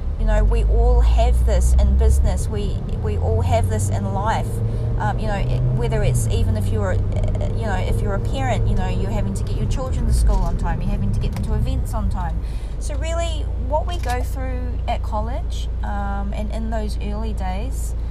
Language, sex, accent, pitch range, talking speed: English, female, Australian, 65-105 Hz, 210 wpm